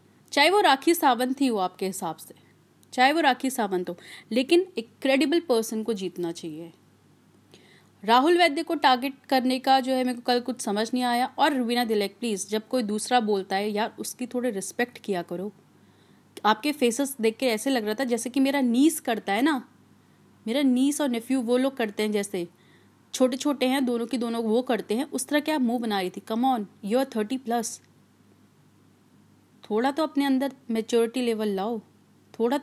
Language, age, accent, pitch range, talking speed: Hindi, 30-49, native, 205-255 Hz, 195 wpm